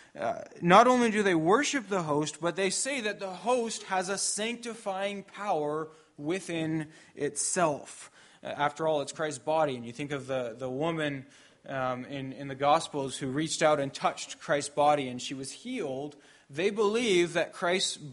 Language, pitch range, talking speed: English, 145-205 Hz, 175 wpm